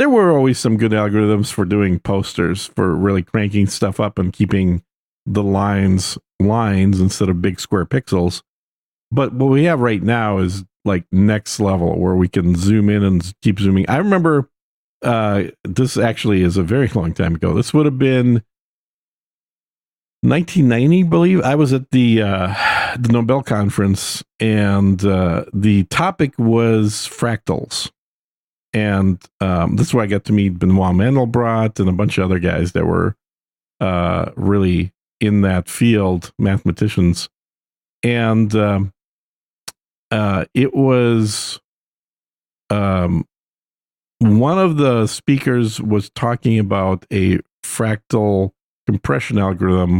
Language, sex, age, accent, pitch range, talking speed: English, male, 50-69, American, 90-115 Hz, 140 wpm